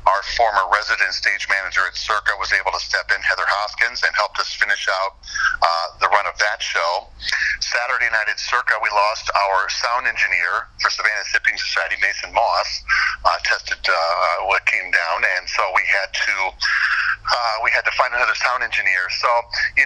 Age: 50-69